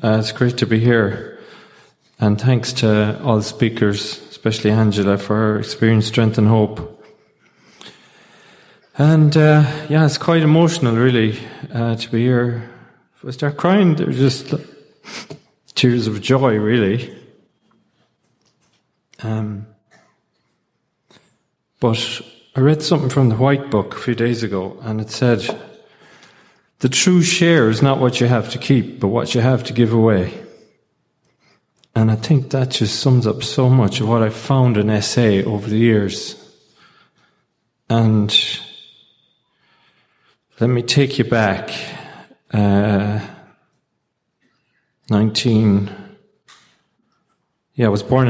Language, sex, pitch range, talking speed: English, male, 110-130 Hz, 130 wpm